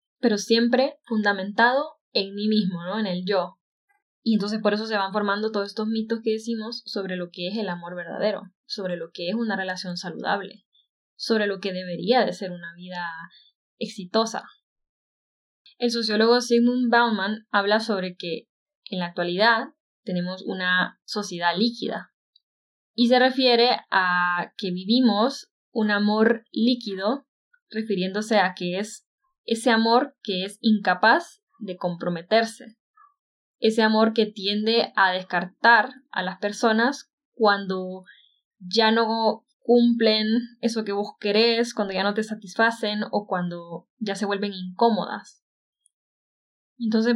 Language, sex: Spanish, female